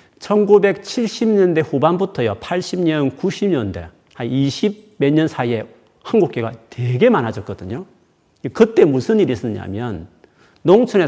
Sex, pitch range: male, 110-180 Hz